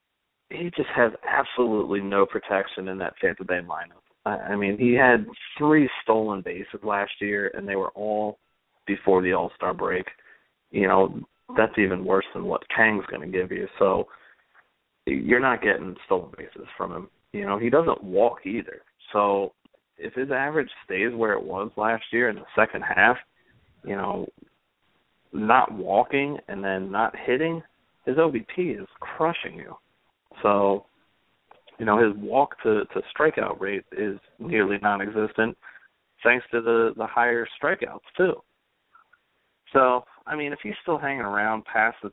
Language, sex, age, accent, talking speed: English, male, 30-49, American, 155 wpm